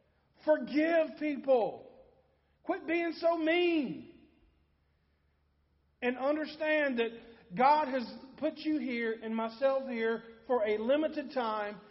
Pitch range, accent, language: 220-280 Hz, American, English